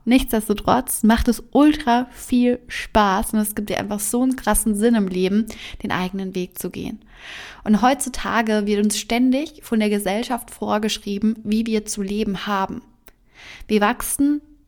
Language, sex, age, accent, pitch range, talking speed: German, female, 20-39, German, 210-255 Hz, 155 wpm